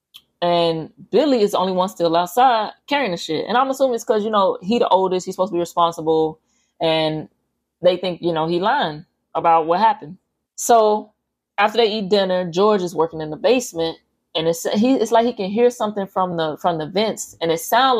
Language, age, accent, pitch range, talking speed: English, 20-39, American, 170-205 Hz, 215 wpm